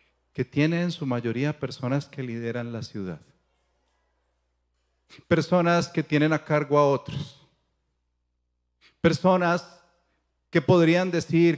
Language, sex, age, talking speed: Spanish, male, 40-59, 110 wpm